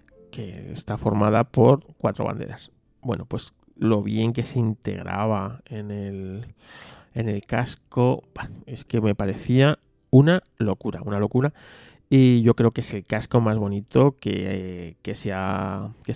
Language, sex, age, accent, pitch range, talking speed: Spanish, male, 30-49, Spanish, 100-125 Hz, 130 wpm